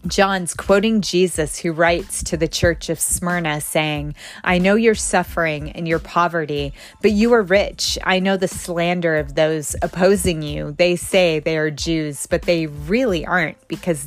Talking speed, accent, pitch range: 170 wpm, American, 155-185 Hz